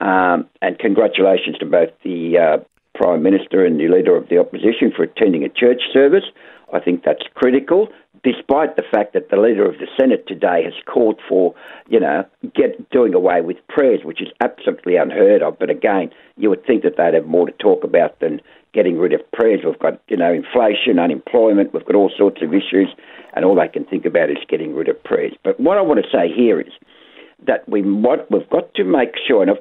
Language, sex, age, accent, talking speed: English, male, 60-79, Australian, 215 wpm